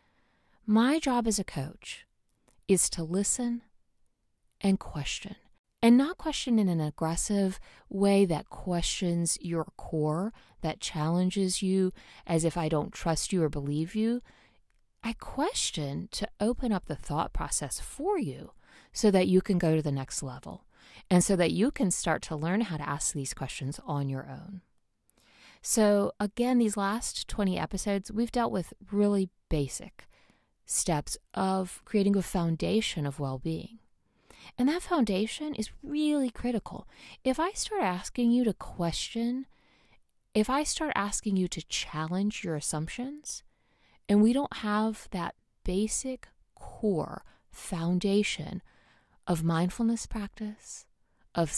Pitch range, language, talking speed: 165-225 Hz, English, 140 wpm